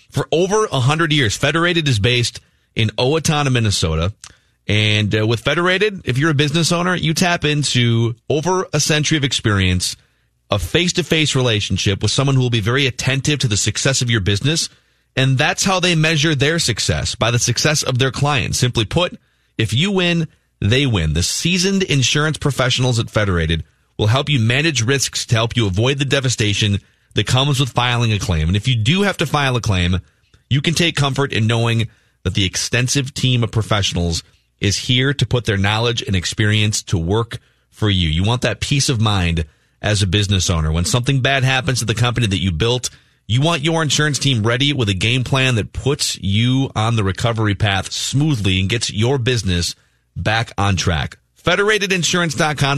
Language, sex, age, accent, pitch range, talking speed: English, male, 30-49, American, 105-140 Hz, 190 wpm